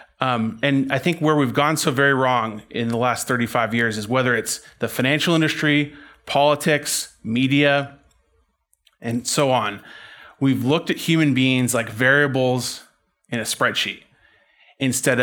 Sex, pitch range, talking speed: male, 125-150 Hz, 145 wpm